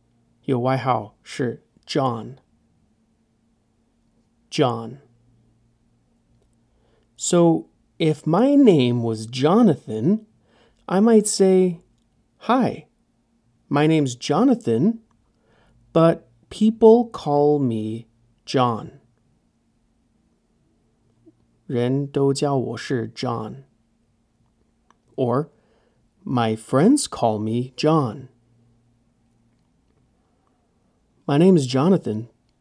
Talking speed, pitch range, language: 65 wpm, 115-150 Hz, English